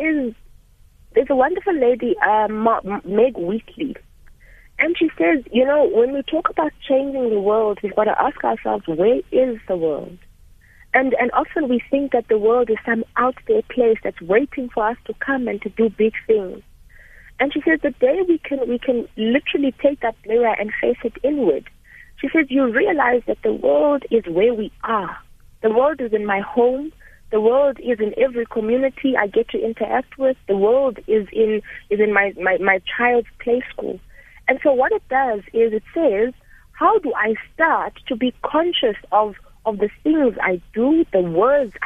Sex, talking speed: female, 190 wpm